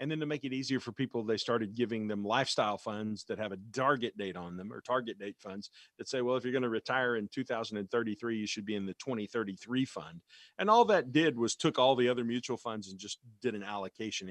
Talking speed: 245 wpm